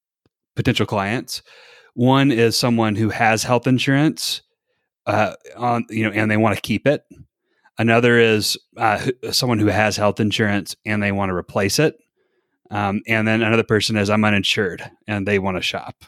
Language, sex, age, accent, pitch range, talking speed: English, male, 30-49, American, 105-125 Hz, 175 wpm